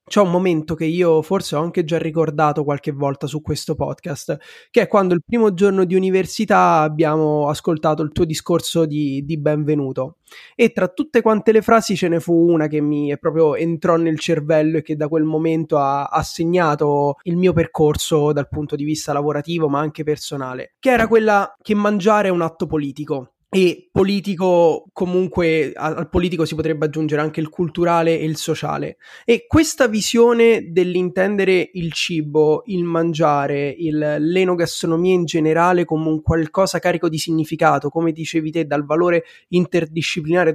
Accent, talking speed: native, 170 wpm